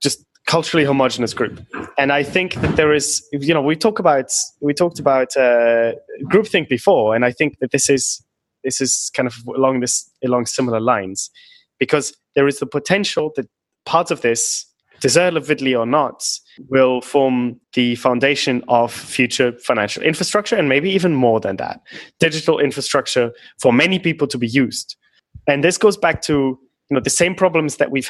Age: 20-39